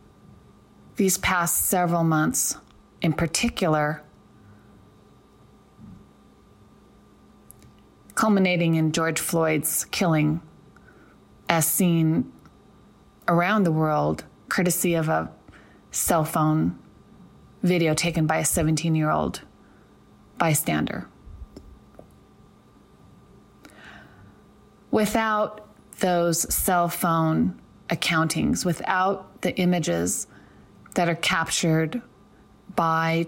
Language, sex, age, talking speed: English, female, 30-49, 70 wpm